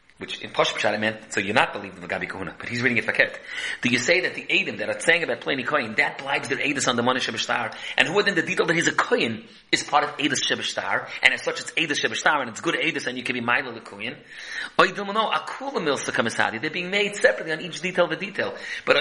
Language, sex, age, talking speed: English, male, 30-49, 255 wpm